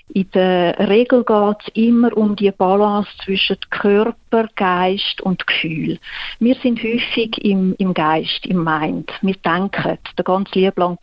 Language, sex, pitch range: English, female, 185-230 Hz